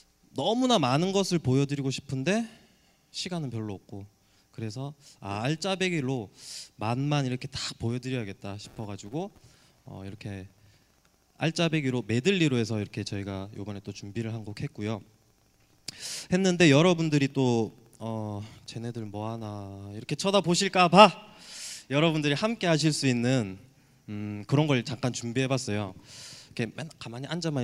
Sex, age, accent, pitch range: male, 20-39, native, 105-150 Hz